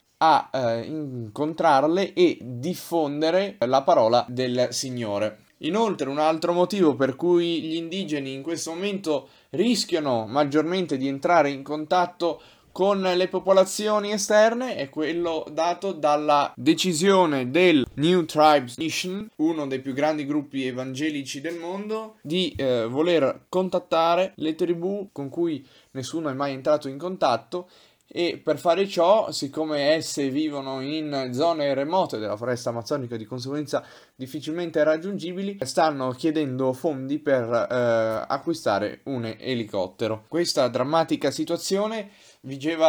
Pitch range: 135-175 Hz